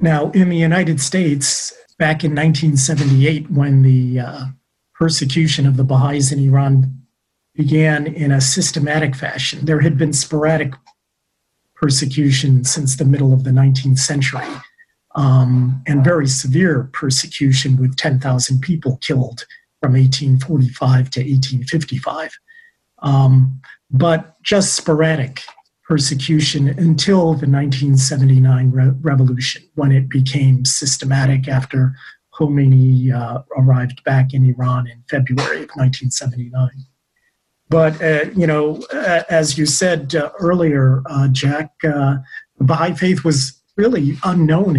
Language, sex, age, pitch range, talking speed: English, male, 40-59, 130-155 Hz, 120 wpm